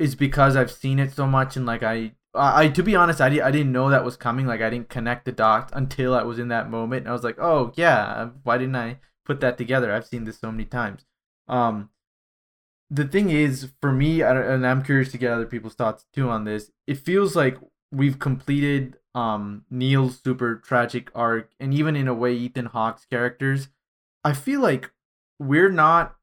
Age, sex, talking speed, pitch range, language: 20-39, male, 215 wpm, 120-135 Hz, English